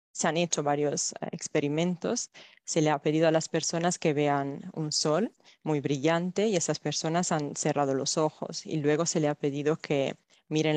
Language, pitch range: Spanish, 145-170 Hz